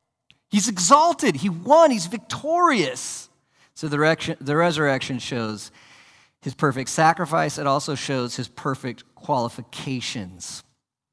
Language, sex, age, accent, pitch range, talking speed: English, male, 40-59, American, 120-150 Hz, 110 wpm